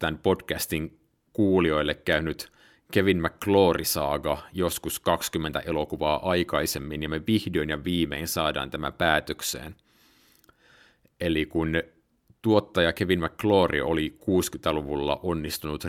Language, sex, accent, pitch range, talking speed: Finnish, male, native, 75-90 Hz, 100 wpm